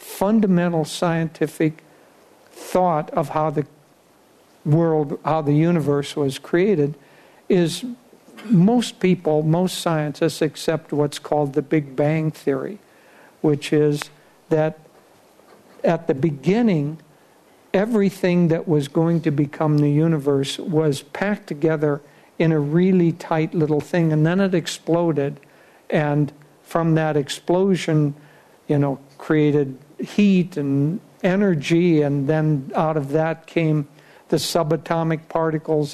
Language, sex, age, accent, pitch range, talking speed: English, male, 60-79, American, 150-180 Hz, 115 wpm